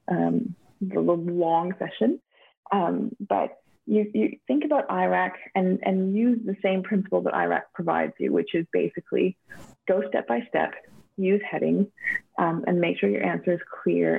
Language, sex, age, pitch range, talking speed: English, female, 30-49, 165-210 Hz, 165 wpm